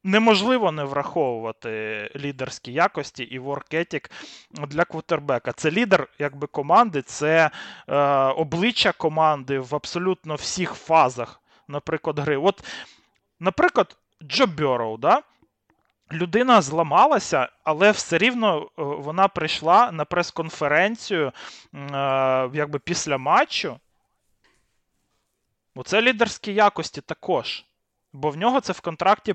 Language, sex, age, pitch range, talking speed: Ukrainian, male, 30-49, 145-190 Hz, 105 wpm